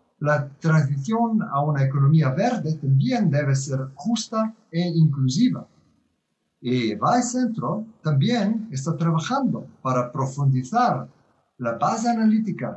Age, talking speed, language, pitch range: 50-69, 110 wpm, Spanish, 135-190 Hz